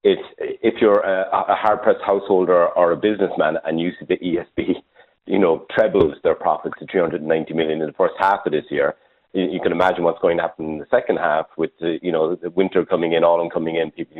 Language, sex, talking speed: English, male, 230 wpm